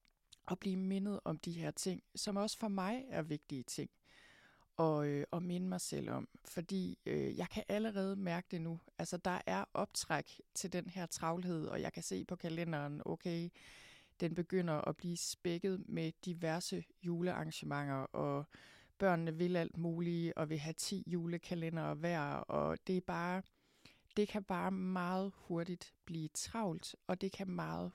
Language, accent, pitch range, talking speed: Danish, native, 165-195 Hz, 165 wpm